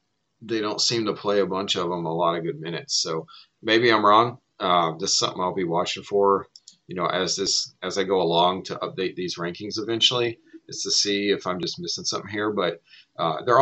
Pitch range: 90-120 Hz